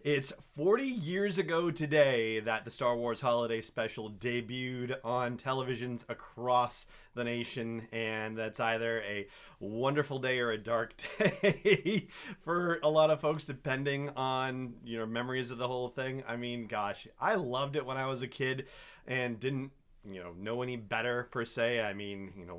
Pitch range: 110-145 Hz